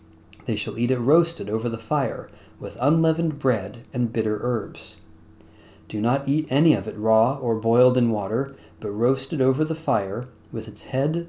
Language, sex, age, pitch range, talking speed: English, male, 40-59, 100-140 Hz, 180 wpm